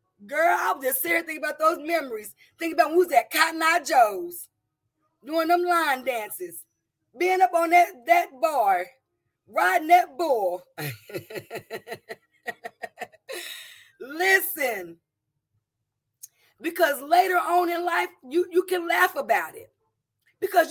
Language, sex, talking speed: English, female, 120 wpm